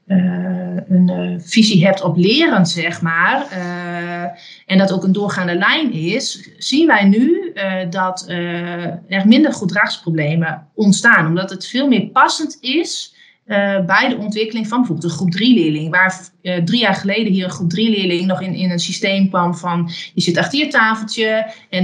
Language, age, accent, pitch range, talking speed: Dutch, 30-49, Dutch, 180-225 Hz, 180 wpm